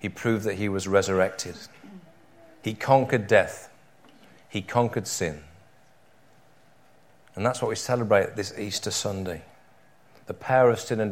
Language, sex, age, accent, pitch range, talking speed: English, male, 40-59, British, 95-120 Hz, 135 wpm